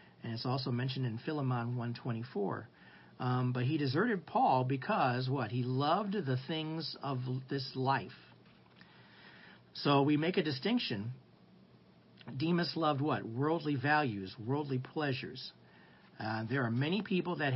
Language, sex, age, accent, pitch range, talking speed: English, male, 50-69, American, 120-145 Hz, 135 wpm